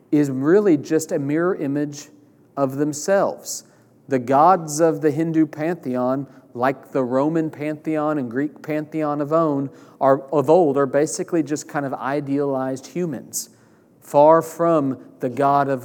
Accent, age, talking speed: American, 40-59, 145 wpm